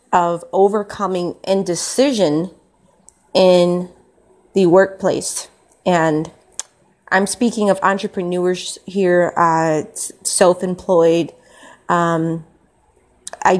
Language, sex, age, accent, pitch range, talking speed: English, female, 30-49, American, 175-195 Hz, 70 wpm